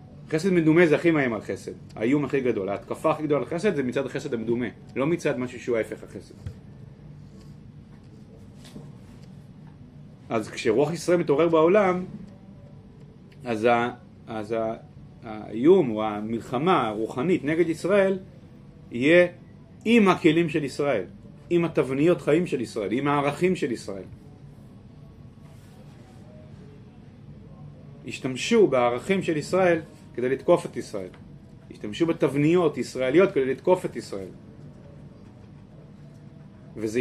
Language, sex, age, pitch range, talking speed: Hebrew, male, 30-49, 125-175 Hz, 115 wpm